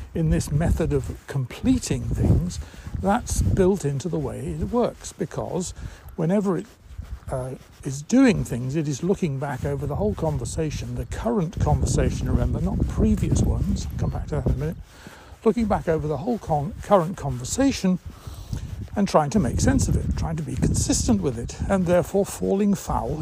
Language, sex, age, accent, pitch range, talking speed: English, male, 60-79, British, 125-185 Hz, 170 wpm